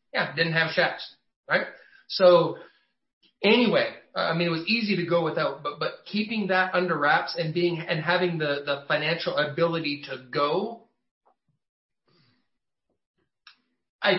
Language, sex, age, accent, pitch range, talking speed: English, male, 30-49, American, 150-185 Hz, 135 wpm